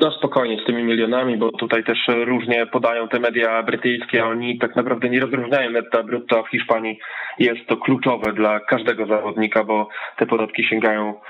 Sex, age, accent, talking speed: male, 20-39, native, 175 wpm